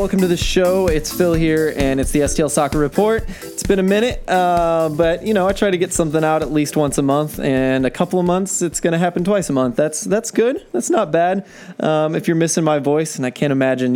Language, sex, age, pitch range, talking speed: English, male, 20-39, 130-175 Hz, 260 wpm